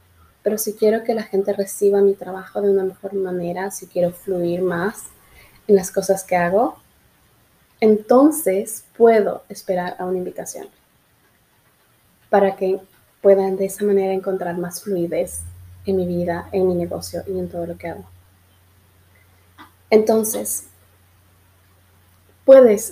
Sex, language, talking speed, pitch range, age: female, Spanish, 135 wpm, 170-205 Hz, 20-39